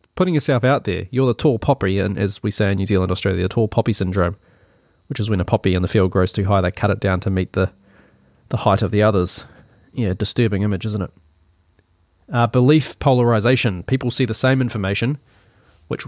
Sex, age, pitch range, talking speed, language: male, 20-39, 95-125 Hz, 215 wpm, English